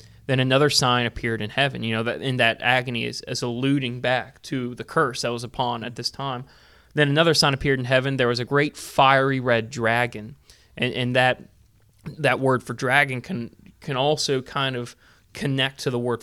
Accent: American